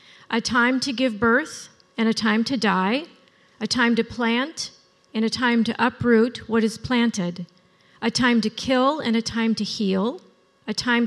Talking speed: 180 wpm